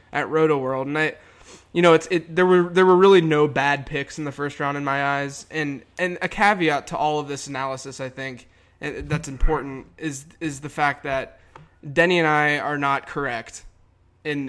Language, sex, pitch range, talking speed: English, male, 135-160 Hz, 205 wpm